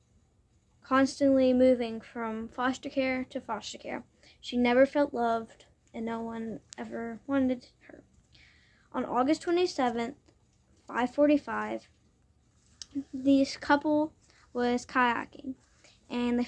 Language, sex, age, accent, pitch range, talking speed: English, female, 10-29, American, 230-265 Hz, 100 wpm